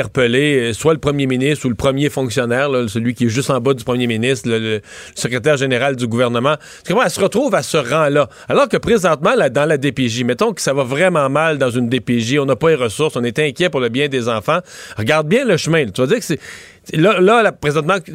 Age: 40-59